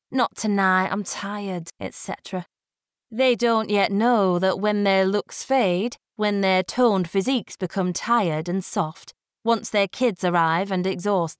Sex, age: female, 20-39